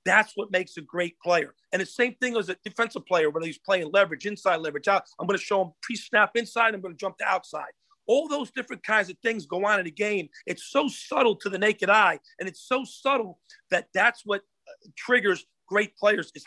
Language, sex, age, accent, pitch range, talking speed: English, male, 50-69, American, 185-235 Hz, 230 wpm